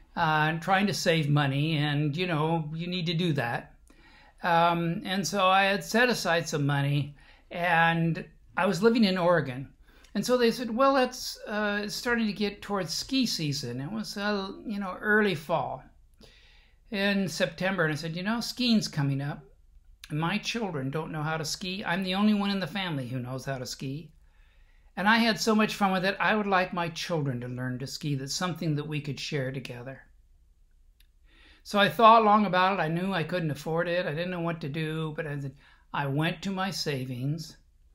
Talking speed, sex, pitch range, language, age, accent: 200 wpm, male, 140-185 Hz, English, 60-79, American